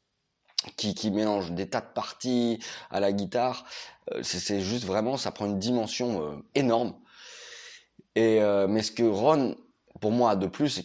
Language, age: French, 20-39